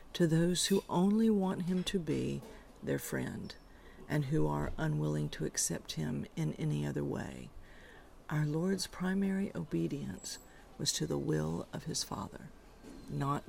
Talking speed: 145 wpm